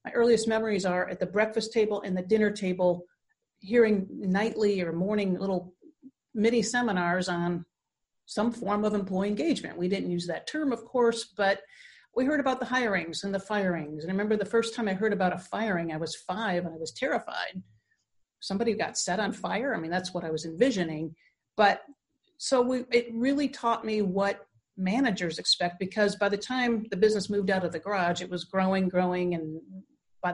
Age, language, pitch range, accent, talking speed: 50-69, English, 180-230 Hz, American, 190 wpm